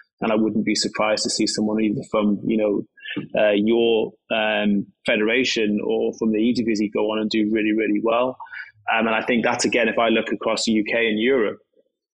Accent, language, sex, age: British, English, male, 20-39